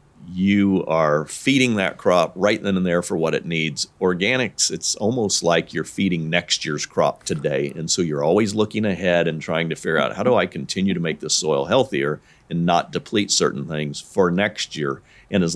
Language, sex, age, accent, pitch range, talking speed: English, male, 50-69, American, 85-100 Hz, 205 wpm